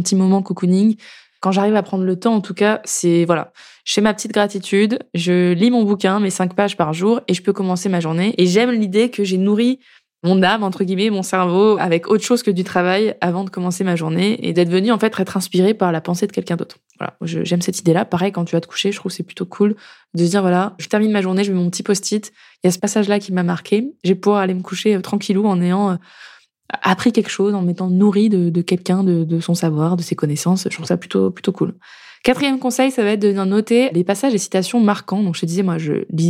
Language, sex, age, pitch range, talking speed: French, female, 20-39, 180-215 Hz, 255 wpm